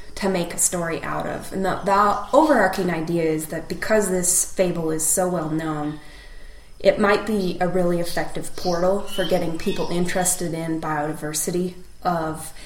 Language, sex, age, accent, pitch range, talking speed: English, female, 20-39, American, 155-185 Hz, 160 wpm